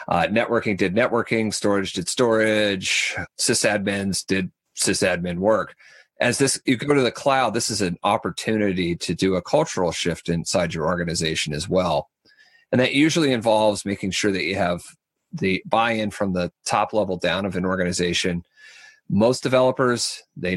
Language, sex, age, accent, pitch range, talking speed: English, male, 40-59, American, 90-115 Hz, 160 wpm